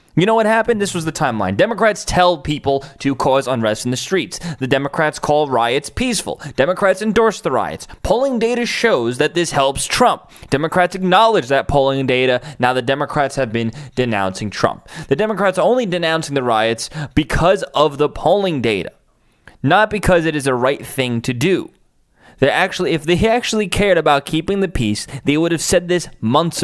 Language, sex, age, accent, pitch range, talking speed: English, male, 20-39, American, 125-180 Hz, 185 wpm